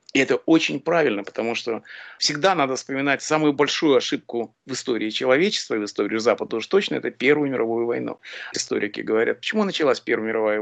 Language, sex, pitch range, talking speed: Russian, male, 135-195 Hz, 175 wpm